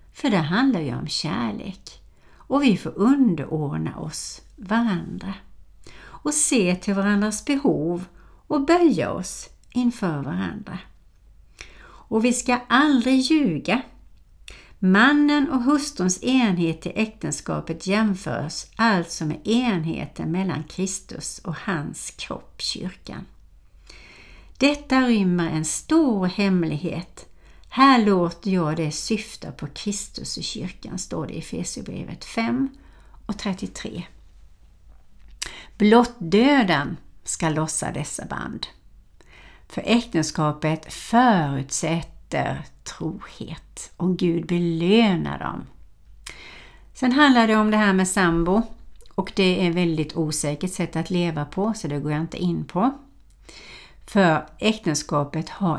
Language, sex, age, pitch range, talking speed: Swedish, female, 60-79, 160-230 Hz, 115 wpm